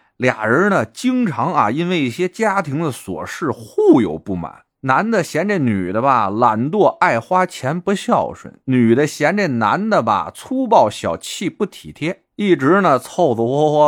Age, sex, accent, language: 30-49, male, native, Chinese